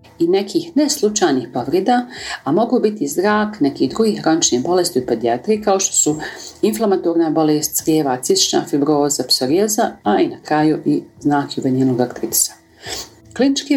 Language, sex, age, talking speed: Croatian, female, 40-59, 135 wpm